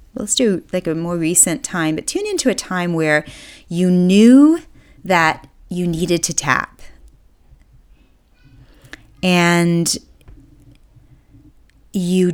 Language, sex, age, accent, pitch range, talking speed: English, female, 30-49, American, 145-175 Hz, 110 wpm